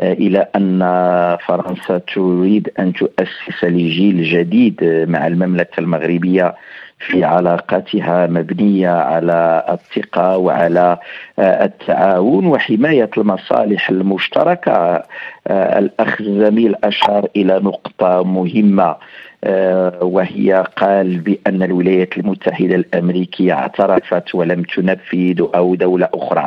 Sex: male